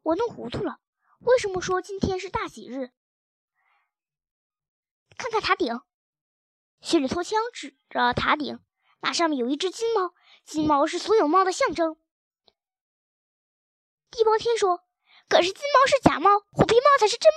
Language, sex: Chinese, male